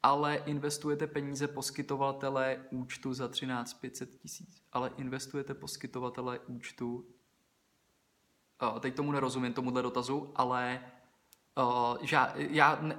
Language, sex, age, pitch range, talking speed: Czech, male, 20-39, 125-150 Hz, 105 wpm